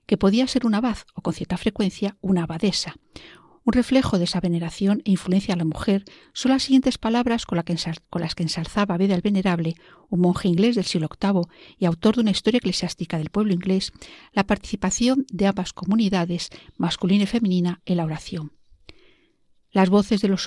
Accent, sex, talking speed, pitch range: Spanish, female, 180 wpm, 180-230 Hz